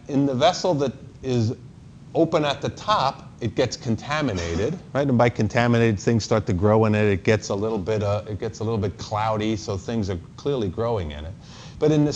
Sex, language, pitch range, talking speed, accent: male, English, 115-150 Hz, 215 wpm, American